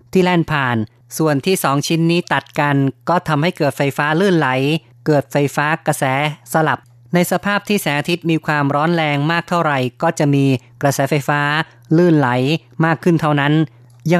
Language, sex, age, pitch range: Thai, female, 30-49, 135-165 Hz